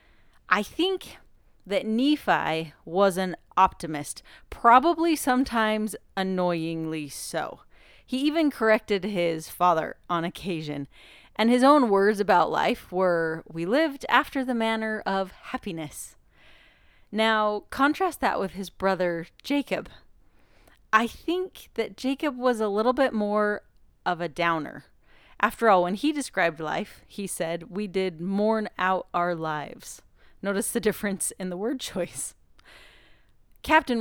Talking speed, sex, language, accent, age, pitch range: 130 wpm, female, English, American, 30-49, 175-240 Hz